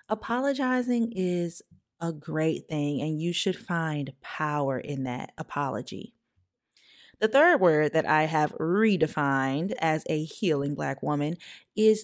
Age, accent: 20-39, American